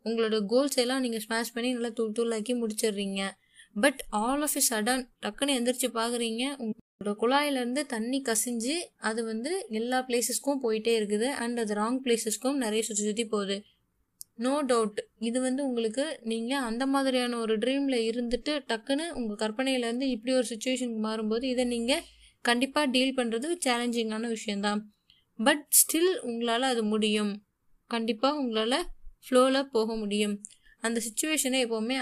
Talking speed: 140 wpm